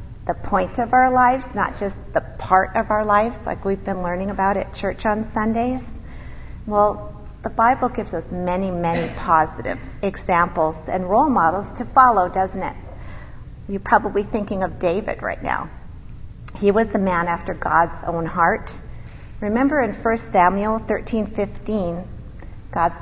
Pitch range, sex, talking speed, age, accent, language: 180-220 Hz, female, 150 wpm, 40-59, American, English